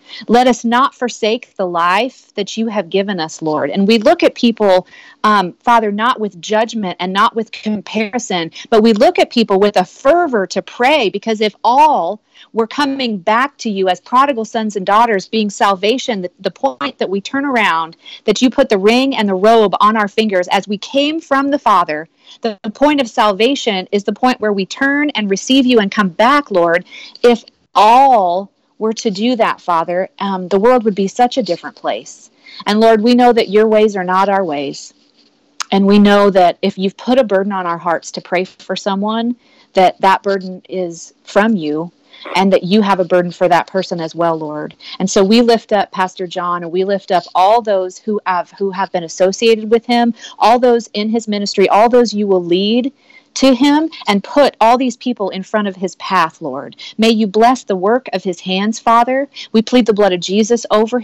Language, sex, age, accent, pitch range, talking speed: English, female, 40-59, American, 190-240 Hz, 210 wpm